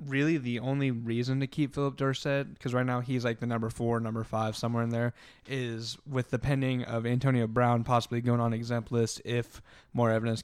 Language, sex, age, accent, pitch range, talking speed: English, male, 10-29, American, 115-130 Hz, 205 wpm